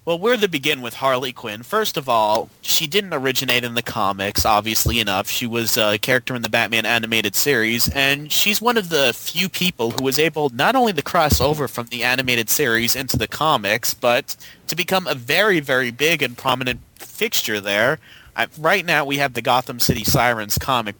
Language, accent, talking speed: English, American, 200 wpm